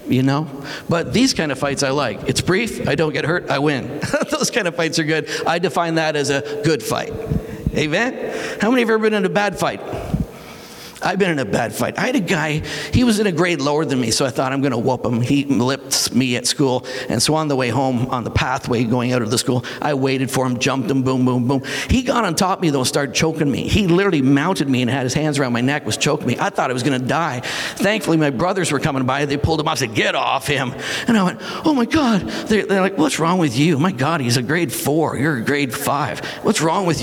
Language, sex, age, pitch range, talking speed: English, male, 50-69, 135-190 Hz, 270 wpm